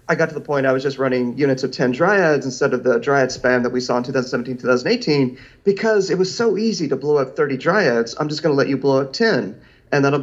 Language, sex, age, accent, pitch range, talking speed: English, male, 40-59, American, 130-180 Hz, 260 wpm